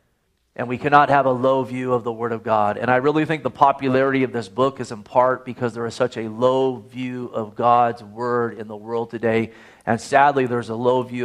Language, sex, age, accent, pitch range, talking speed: English, male, 40-59, American, 120-140 Hz, 235 wpm